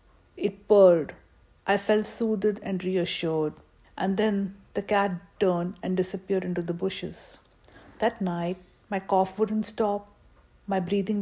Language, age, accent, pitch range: English, 60-79, Indian, 180-200 Hz